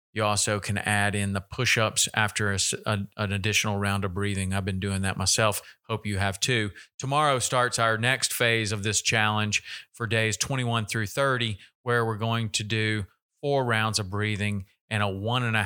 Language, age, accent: English, 40-59, American